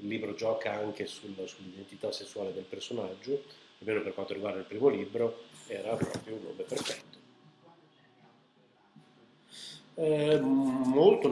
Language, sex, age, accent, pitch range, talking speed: Italian, male, 50-69, native, 105-125 Hz, 120 wpm